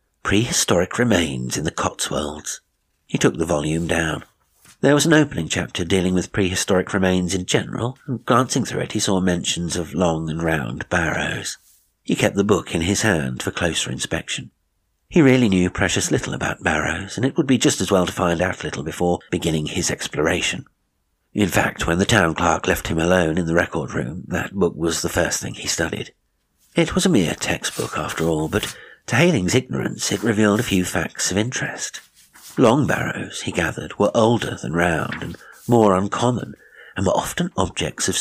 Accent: British